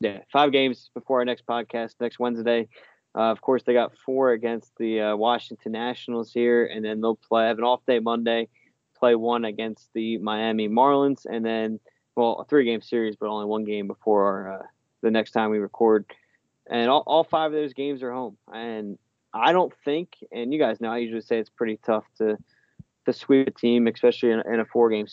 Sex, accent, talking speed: male, American, 205 wpm